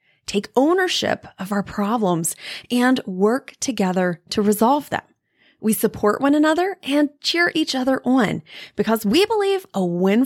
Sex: female